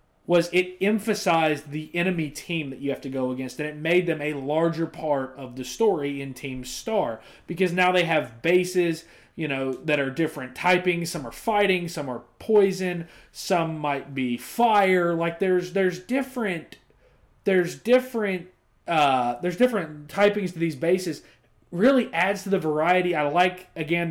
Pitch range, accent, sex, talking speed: 150-195 Hz, American, male, 165 wpm